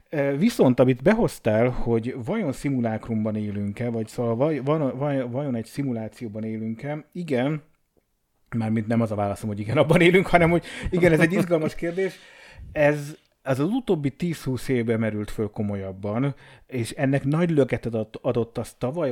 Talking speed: 150 wpm